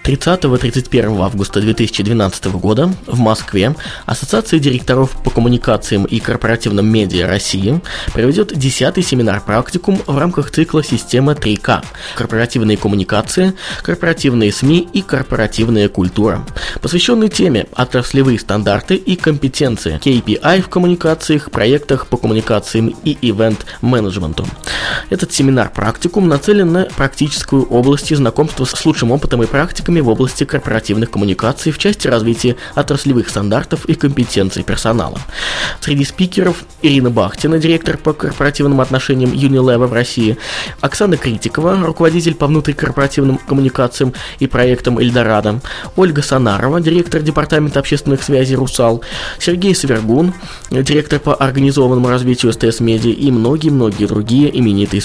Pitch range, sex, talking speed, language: 110-150 Hz, male, 120 wpm, Russian